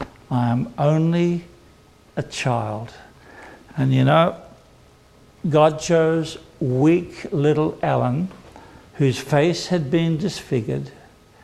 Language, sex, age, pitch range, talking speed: English, male, 60-79, 135-195 Hz, 95 wpm